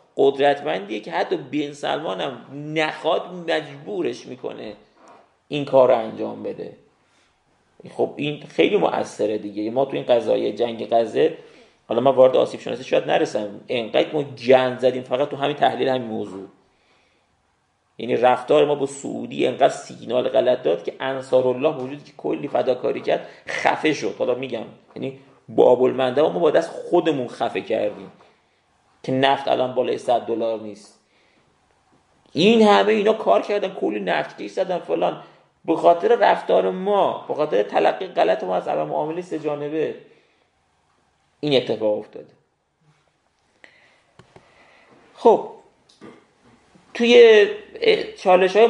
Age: 40-59